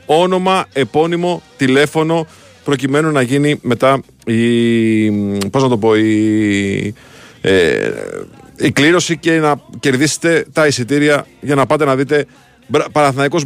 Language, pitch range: Greek, 130-175 Hz